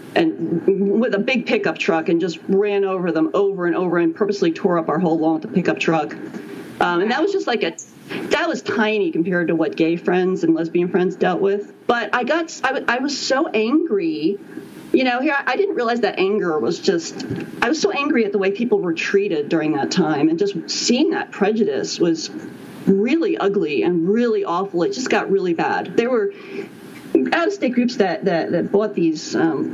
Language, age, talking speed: English, 40-59, 205 wpm